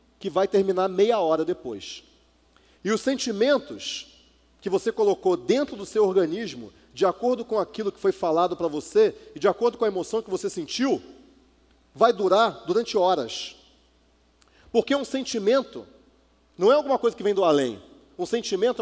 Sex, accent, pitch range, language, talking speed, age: male, Brazilian, 195-280 Hz, Portuguese, 165 wpm, 40-59